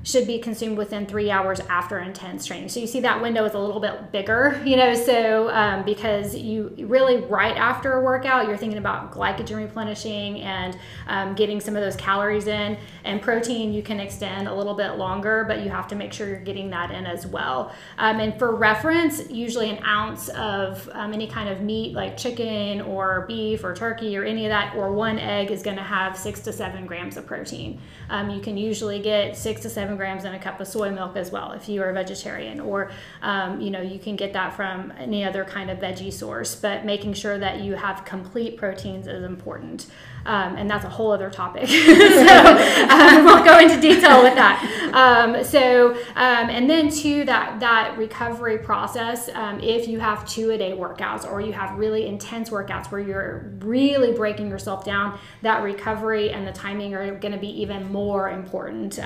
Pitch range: 200-230 Hz